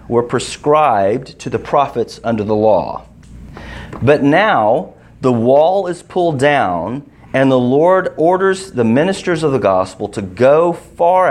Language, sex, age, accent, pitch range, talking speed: English, male, 40-59, American, 110-170 Hz, 145 wpm